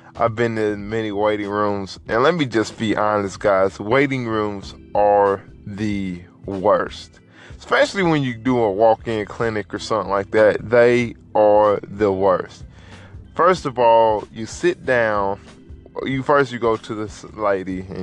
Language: English